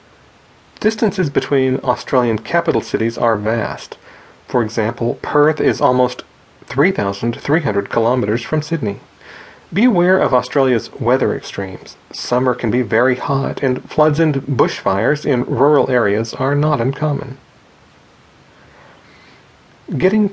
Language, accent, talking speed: English, American, 110 wpm